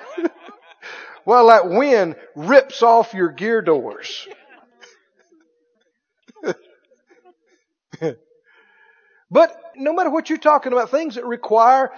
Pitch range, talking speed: 210-330 Hz, 90 wpm